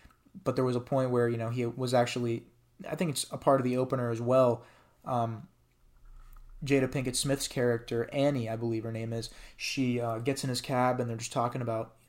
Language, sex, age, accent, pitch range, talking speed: English, male, 20-39, American, 115-130 Hz, 215 wpm